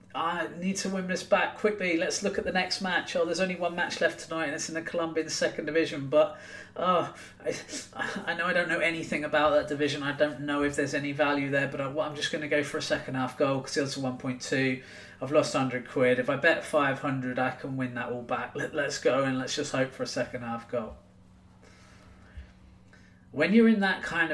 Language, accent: English, British